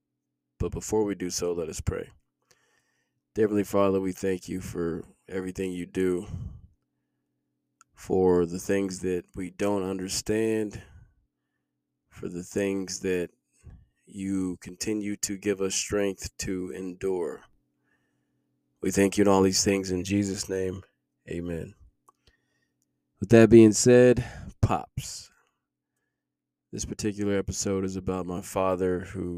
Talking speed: 125 wpm